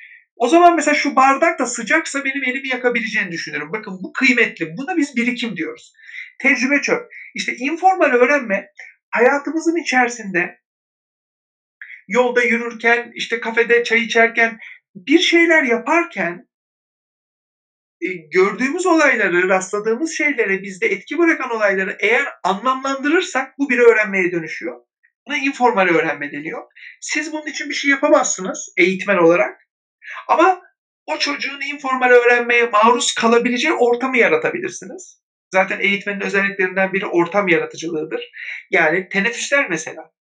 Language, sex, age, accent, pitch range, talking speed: Turkish, male, 60-79, native, 195-285 Hz, 115 wpm